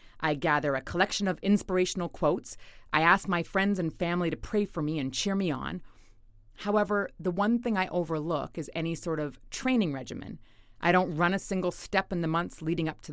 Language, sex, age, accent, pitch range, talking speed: English, female, 30-49, American, 140-195 Hz, 205 wpm